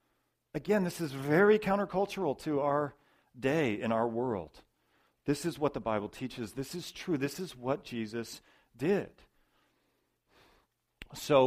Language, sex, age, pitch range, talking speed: English, male, 40-59, 105-140 Hz, 135 wpm